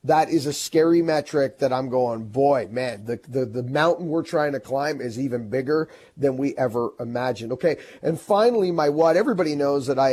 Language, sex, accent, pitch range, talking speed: English, male, American, 145-215 Hz, 200 wpm